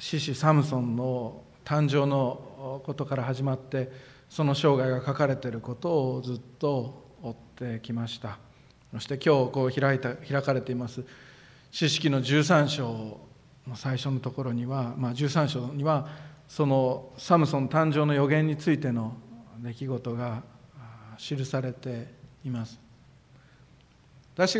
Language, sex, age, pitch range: Japanese, male, 50-69, 120-145 Hz